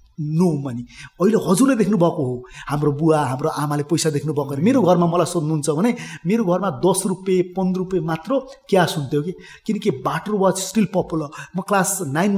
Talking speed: 130 wpm